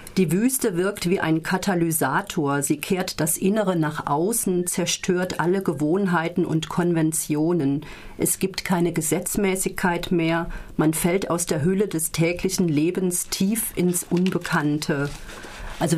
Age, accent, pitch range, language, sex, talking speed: 40-59, German, 165-190 Hz, German, female, 130 wpm